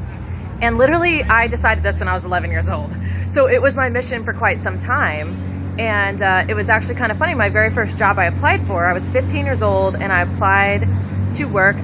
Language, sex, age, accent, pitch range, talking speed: English, female, 20-39, American, 90-100 Hz, 230 wpm